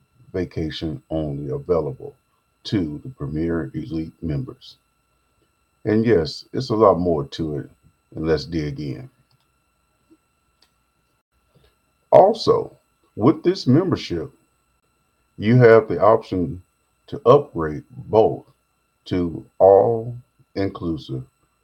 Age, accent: 40-59, American